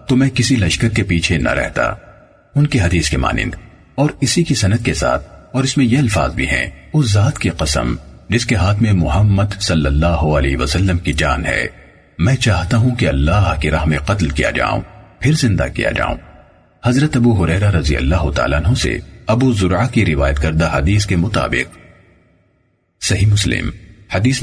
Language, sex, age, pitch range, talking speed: Urdu, male, 40-59, 80-120 Hz, 185 wpm